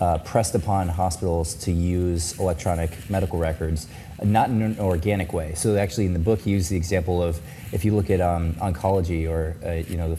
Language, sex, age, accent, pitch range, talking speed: English, male, 20-39, American, 90-110 Hz, 205 wpm